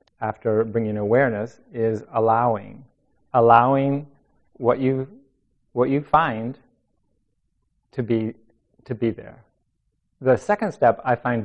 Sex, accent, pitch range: male, American, 110-135 Hz